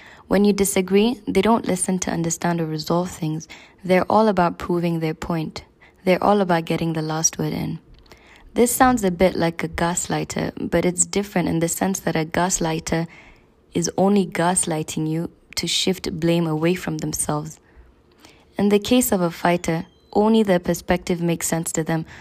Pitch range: 165-195 Hz